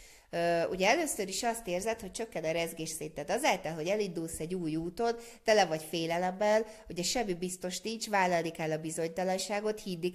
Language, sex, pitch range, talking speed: Hungarian, female, 175-225 Hz, 170 wpm